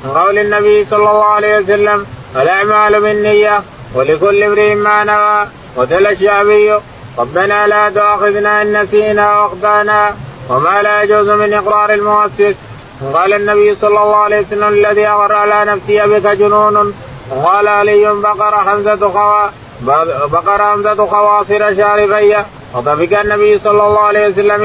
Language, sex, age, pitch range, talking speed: Arabic, male, 30-49, 205-210 Hz, 130 wpm